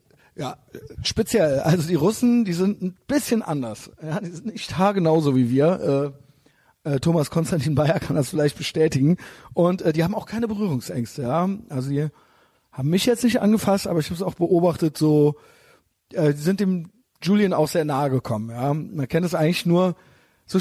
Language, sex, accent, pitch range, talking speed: German, male, German, 135-175 Hz, 190 wpm